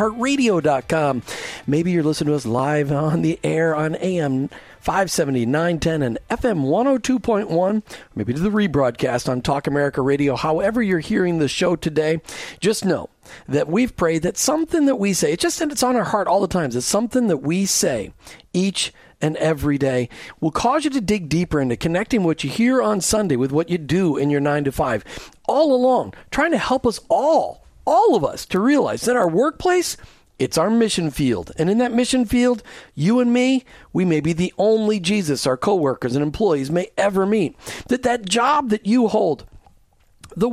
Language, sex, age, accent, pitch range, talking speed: English, male, 40-59, American, 150-225 Hz, 190 wpm